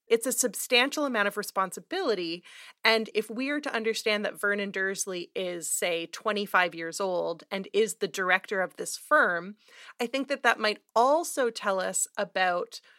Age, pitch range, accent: 30-49, 190-235 Hz, American